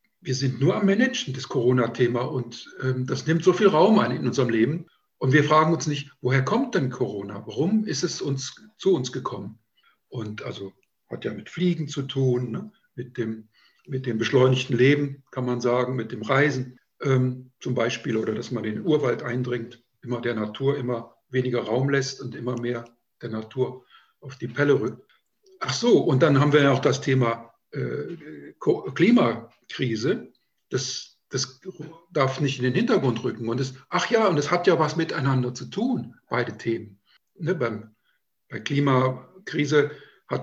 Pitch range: 120-150 Hz